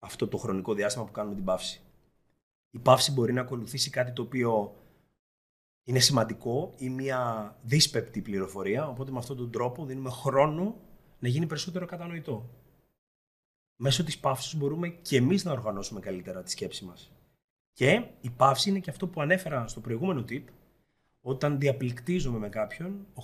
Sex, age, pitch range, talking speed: male, 30-49, 120-160 Hz, 160 wpm